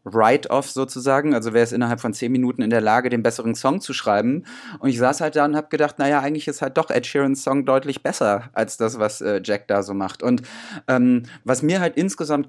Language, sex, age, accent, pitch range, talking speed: German, male, 30-49, German, 120-145 Hz, 230 wpm